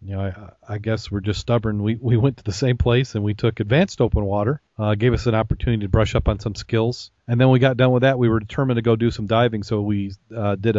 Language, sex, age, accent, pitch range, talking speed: English, male, 40-59, American, 105-125 Hz, 285 wpm